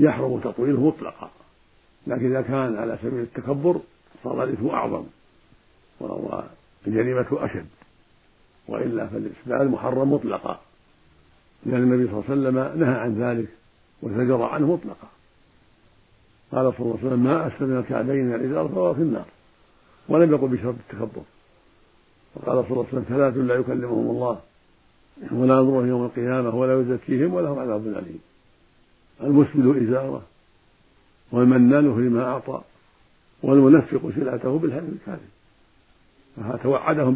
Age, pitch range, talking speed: 60-79, 115-135 Hz, 120 wpm